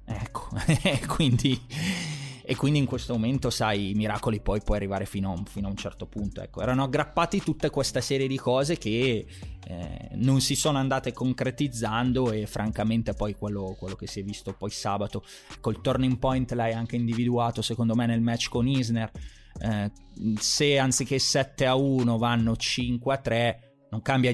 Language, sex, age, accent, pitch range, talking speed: Italian, male, 20-39, native, 110-130 Hz, 180 wpm